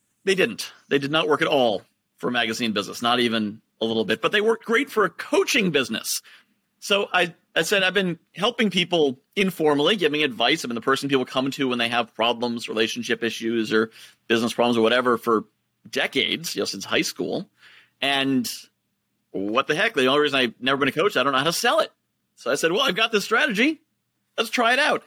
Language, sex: English, male